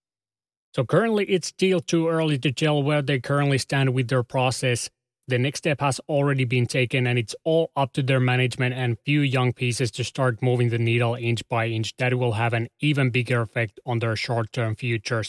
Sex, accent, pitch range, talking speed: male, Finnish, 115-130 Hz, 205 wpm